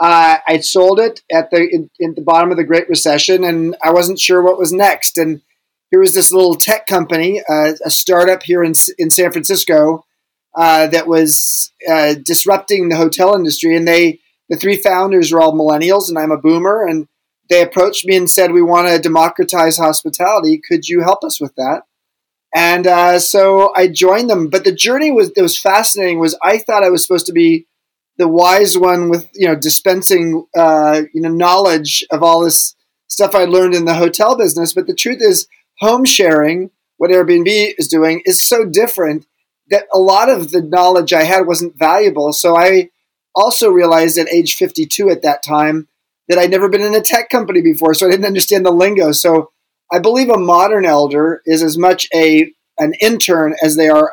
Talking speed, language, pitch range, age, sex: 200 wpm, English, 160-200 Hz, 30-49, male